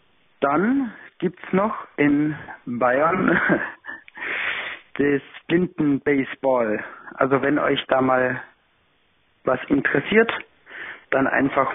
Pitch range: 130-150 Hz